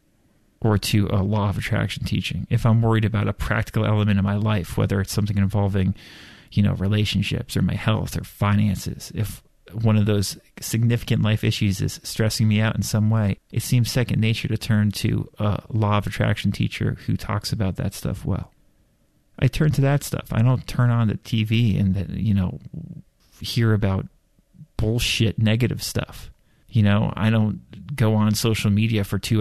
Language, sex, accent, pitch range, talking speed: English, male, American, 100-115 Hz, 185 wpm